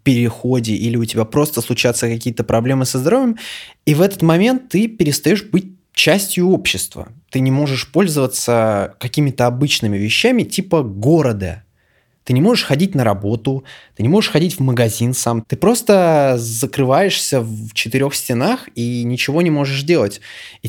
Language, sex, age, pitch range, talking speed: Russian, male, 20-39, 115-160 Hz, 155 wpm